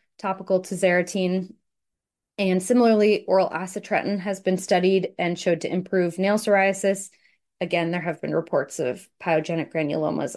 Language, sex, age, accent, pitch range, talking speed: English, female, 20-39, American, 165-200 Hz, 140 wpm